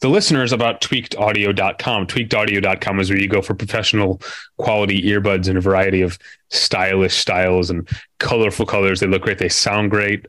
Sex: male